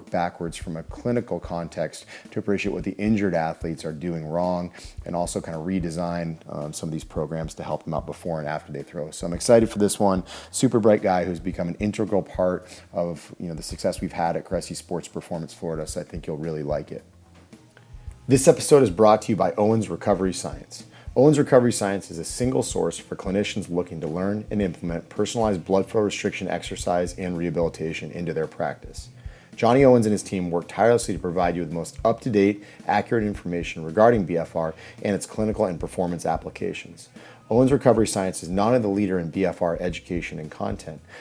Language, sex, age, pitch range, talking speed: English, male, 30-49, 85-105 Hz, 200 wpm